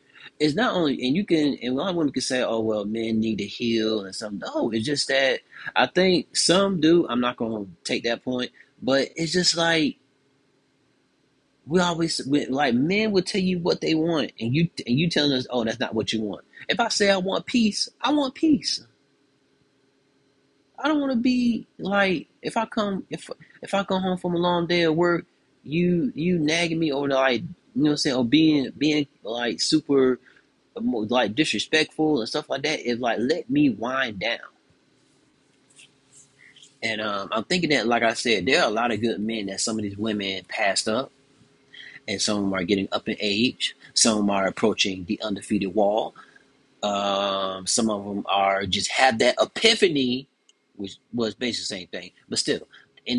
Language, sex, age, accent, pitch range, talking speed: English, male, 30-49, American, 110-170 Hz, 200 wpm